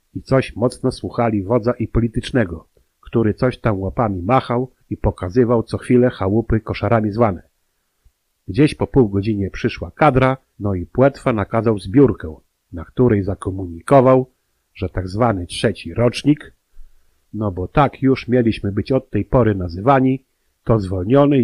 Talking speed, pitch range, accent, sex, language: 140 wpm, 100-130 Hz, native, male, Polish